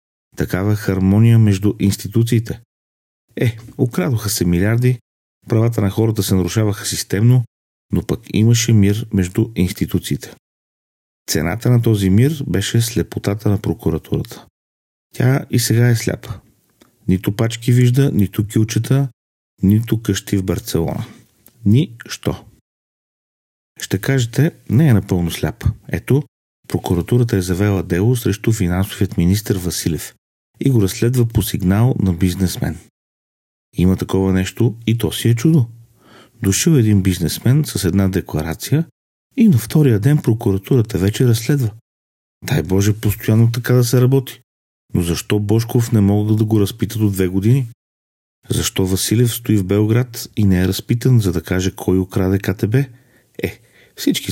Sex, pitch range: male, 95-120 Hz